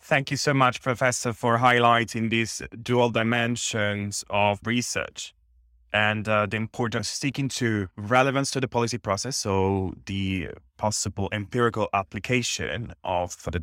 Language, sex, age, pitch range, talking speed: English, male, 20-39, 100-125 Hz, 135 wpm